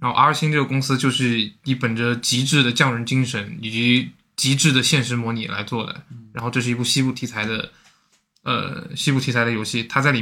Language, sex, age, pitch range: Chinese, male, 20-39, 120-145 Hz